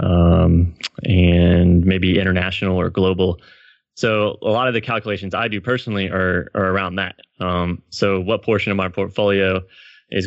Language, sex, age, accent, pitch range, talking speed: English, male, 20-39, American, 95-110 Hz, 160 wpm